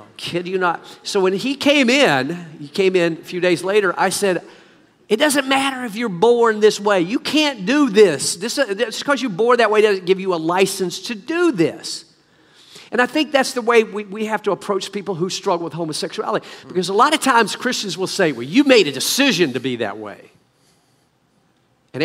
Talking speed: 210 wpm